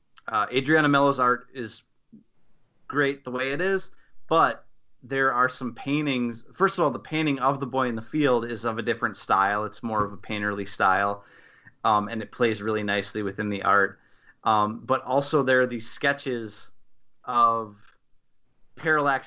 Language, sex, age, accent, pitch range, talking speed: English, male, 30-49, American, 110-135 Hz, 170 wpm